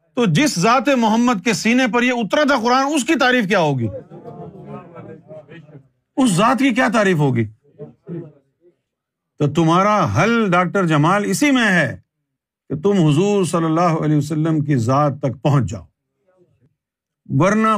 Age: 50-69